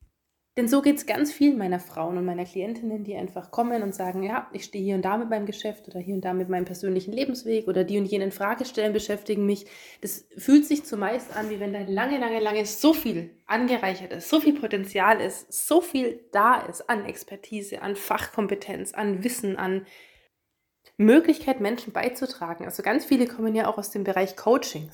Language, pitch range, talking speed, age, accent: German, 185-225 Hz, 200 wpm, 20-39, German